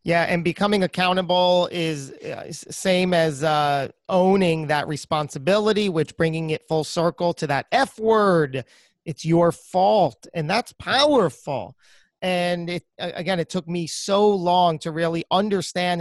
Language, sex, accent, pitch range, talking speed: English, male, American, 155-195 Hz, 140 wpm